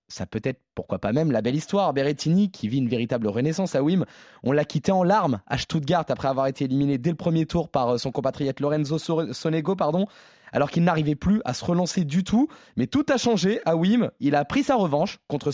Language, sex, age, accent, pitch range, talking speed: French, male, 20-39, French, 145-195 Hz, 230 wpm